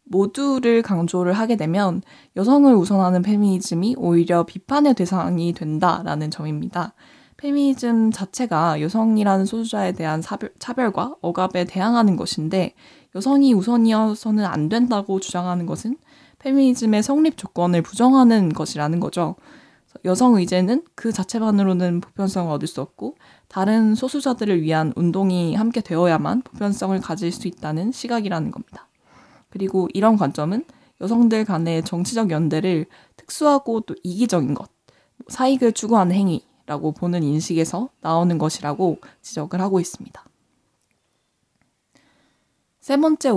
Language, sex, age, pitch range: Korean, female, 20-39, 175-235 Hz